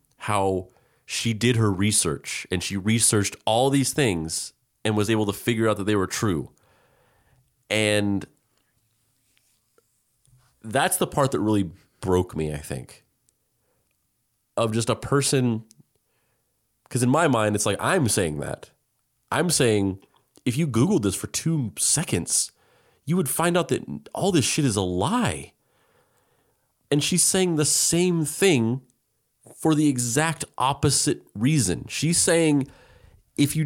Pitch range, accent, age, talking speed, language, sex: 110-145 Hz, American, 30-49, 140 wpm, English, male